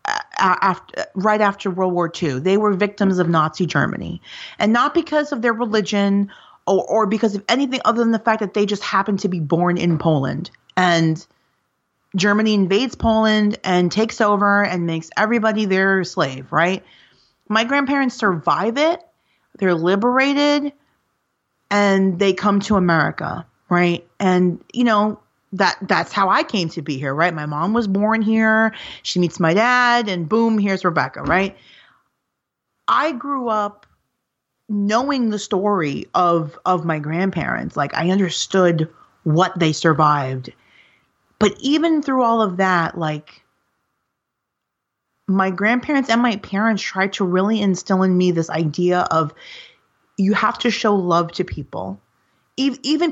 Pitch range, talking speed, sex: 175-225 Hz, 150 wpm, female